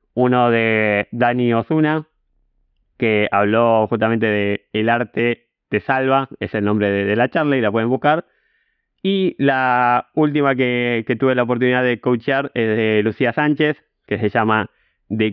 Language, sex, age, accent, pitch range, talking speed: Spanish, male, 20-39, Argentinian, 110-135 Hz, 165 wpm